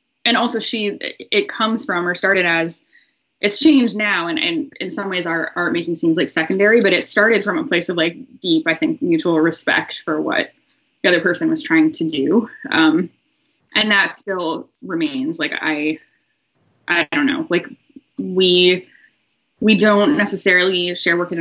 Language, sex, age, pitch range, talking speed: English, female, 10-29, 170-235 Hz, 175 wpm